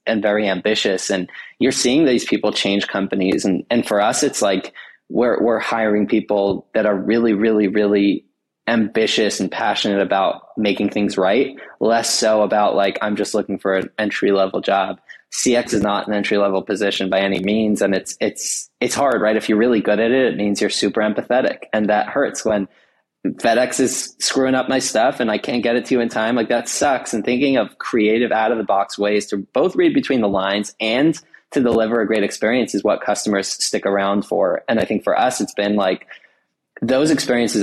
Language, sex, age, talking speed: English, male, 20-39, 205 wpm